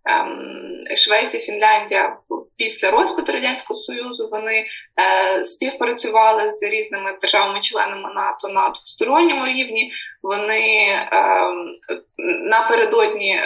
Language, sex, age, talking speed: Ukrainian, female, 20-39, 75 wpm